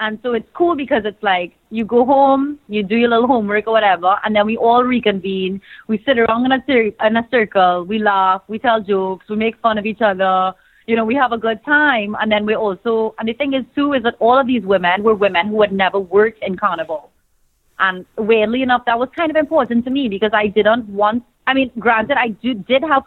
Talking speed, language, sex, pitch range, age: 235 wpm, English, female, 200-245 Hz, 30-49